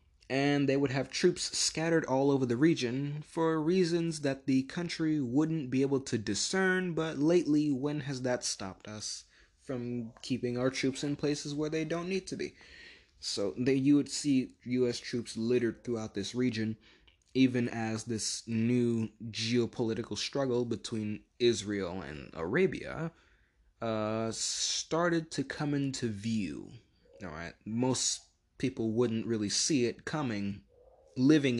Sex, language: male, English